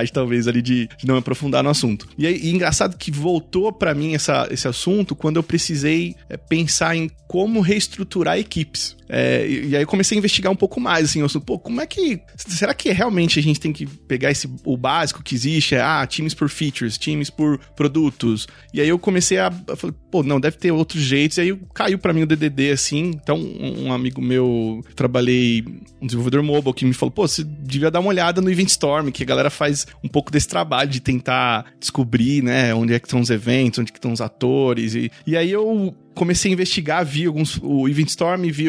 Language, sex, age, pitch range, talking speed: Portuguese, male, 20-39, 130-170 Hz, 210 wpm